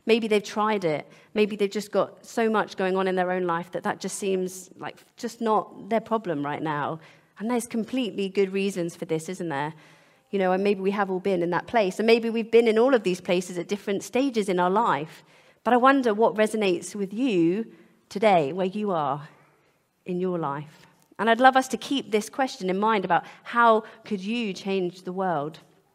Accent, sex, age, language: British, female, 40-59, English